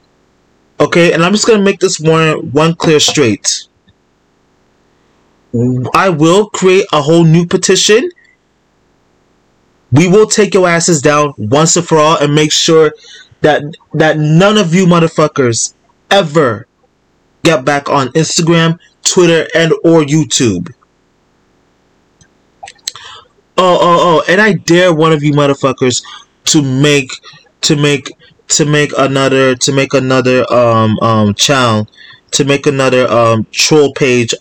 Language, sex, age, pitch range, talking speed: English, male, 20-39, 125-165 Hz, 135 wpm